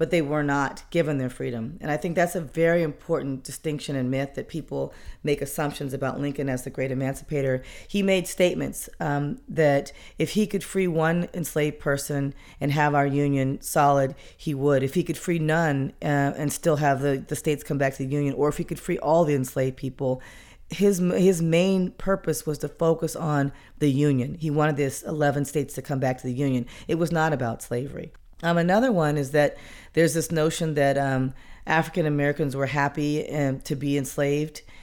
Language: English